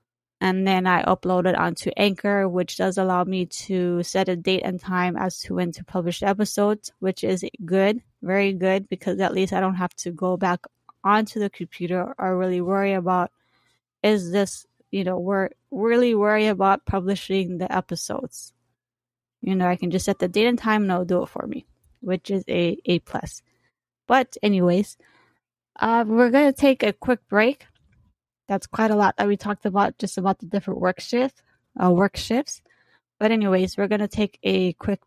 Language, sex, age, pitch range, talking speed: English, female, 20-39, 180-210 Hz, 190 wpm